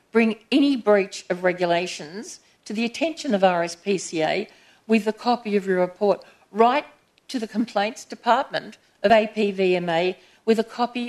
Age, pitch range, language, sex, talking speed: 50-69, 185-235 Hz, English, female, 140 wpm